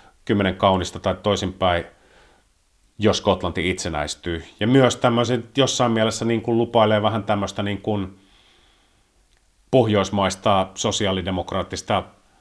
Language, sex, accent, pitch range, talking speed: Finnish, male, native, 95-115 Hz, 80 wpm